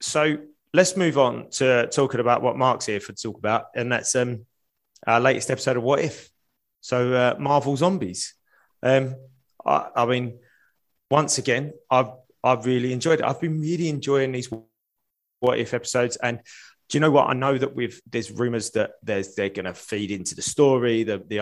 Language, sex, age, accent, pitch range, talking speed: English, male, 20-39, British, 105-130 Hz, 190 wpm